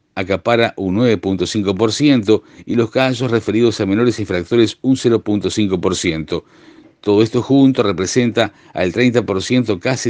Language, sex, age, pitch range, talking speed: Spanish, male, 50-69, 95-125 Hz, 115 wpm